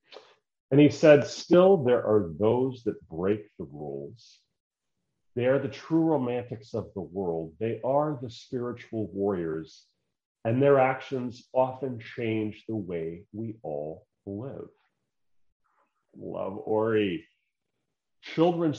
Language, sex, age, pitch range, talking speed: English, male, 40-59, 90-125 Hz, 120 wpm